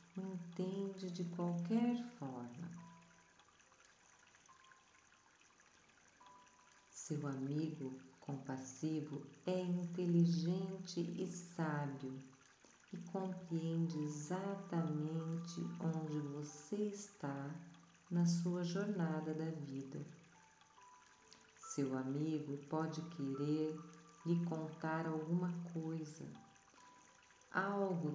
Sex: female